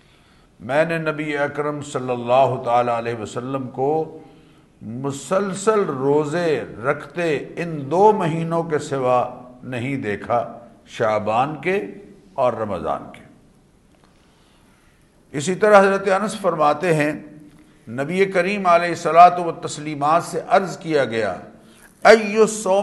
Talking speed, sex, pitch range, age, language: 110 wpm, male, 140-180 Hz, 50-69, English